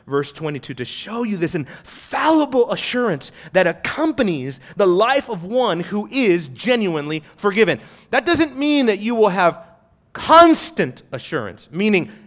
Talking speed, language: 135 wpm, English